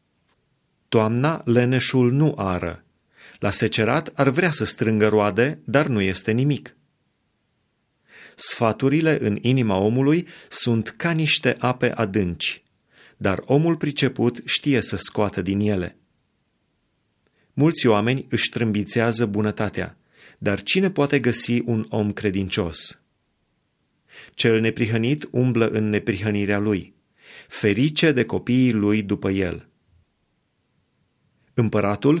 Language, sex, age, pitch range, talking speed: Romanian, male, 30-49, 100-125 Hz, 105 wpm